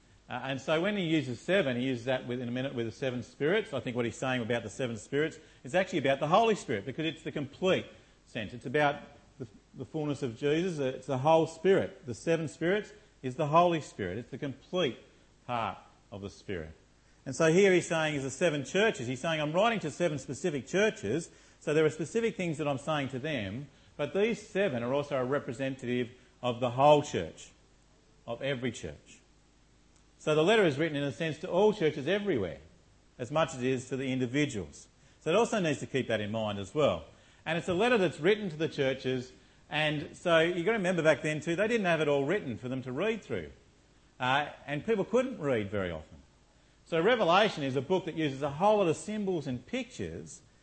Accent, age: Australian, 40-59